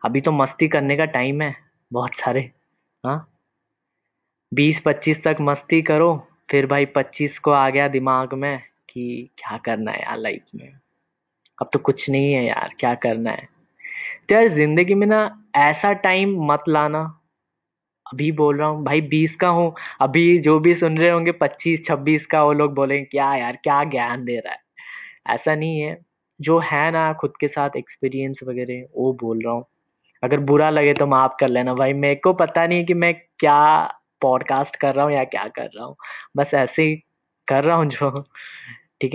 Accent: native